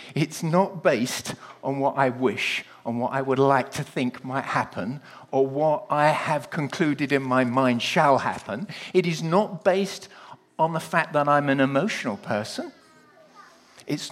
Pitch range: 125-175 Hz